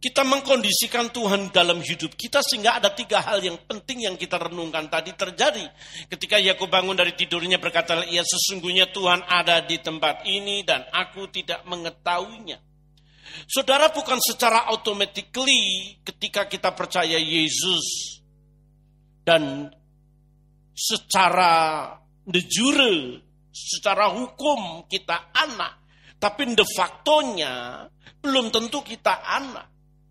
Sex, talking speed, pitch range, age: male, 115 wpm, 165-230 Hz, 50-69